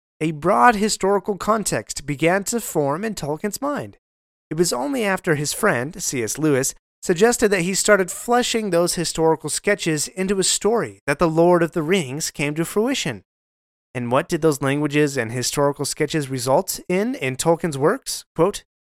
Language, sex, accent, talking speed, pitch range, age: English, male, American, 165 wpm, 135-185 Hz, 30-49